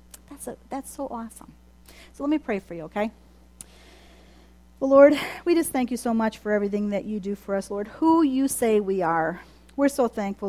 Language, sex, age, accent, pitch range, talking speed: English, female, 40-59, American, 180-210 Hz, 205 wpm